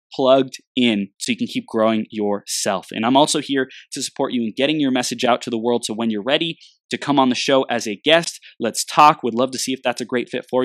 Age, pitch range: 20-39, 115-150 Hz